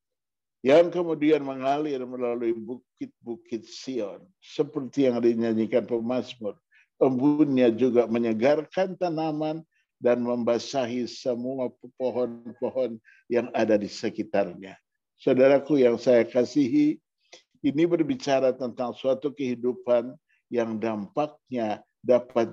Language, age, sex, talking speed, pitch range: Indonesian, 50-69, male, 90 wpm, 115-140 Hz